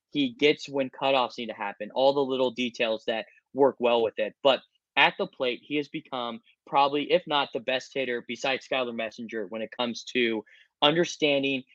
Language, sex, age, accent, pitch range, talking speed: English, male, 20-39, American, 125-160 Hz, 190 wpm